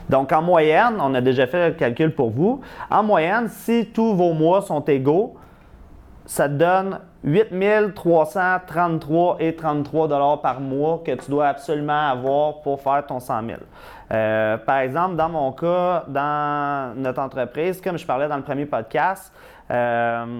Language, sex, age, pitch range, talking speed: French, male, 30-49, 135-170 Hz, 160 wpm